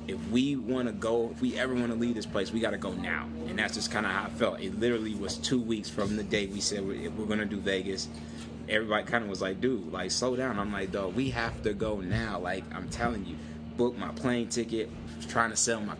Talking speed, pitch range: 265 wpm, 75-115 Hz